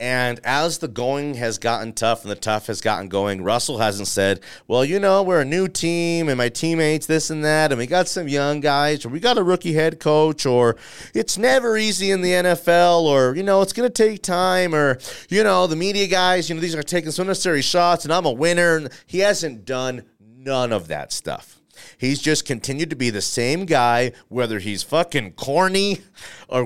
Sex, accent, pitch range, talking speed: male, American, 115-170 Hz, 215 wpm